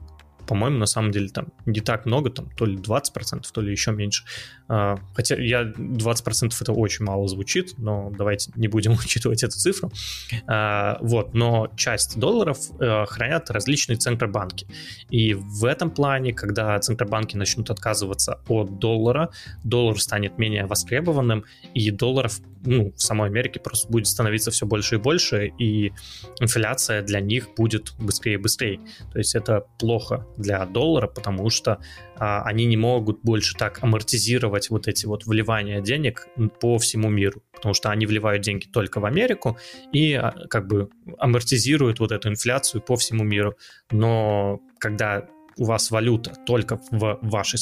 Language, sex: Russian, male